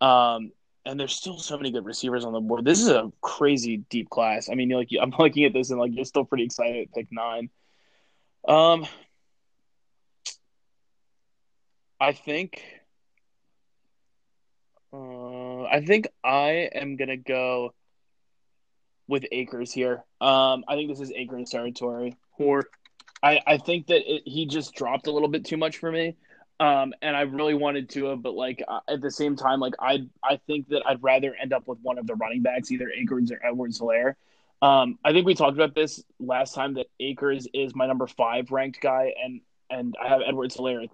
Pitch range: 125-145 Hz